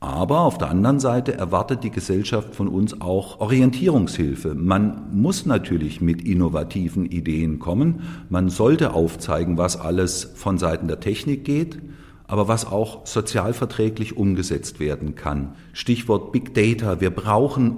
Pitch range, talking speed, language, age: 95-130 Hz, 140 wpm, German, 50-69